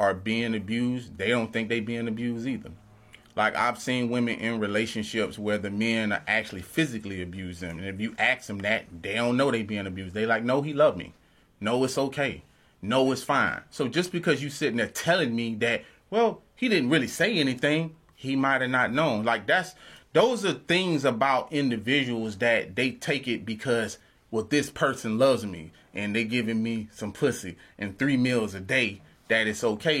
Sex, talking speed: male, 195 wpm